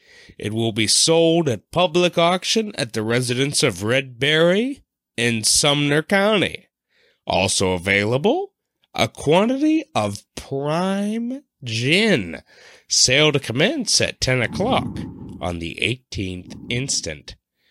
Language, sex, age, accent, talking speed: English, male, 30-49, American, 110 wpm